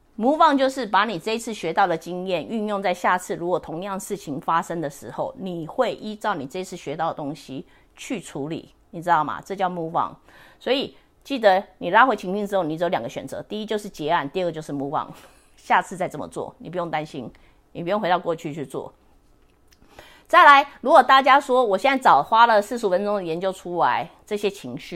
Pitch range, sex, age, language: 160-210 Hz, female, 30-49, English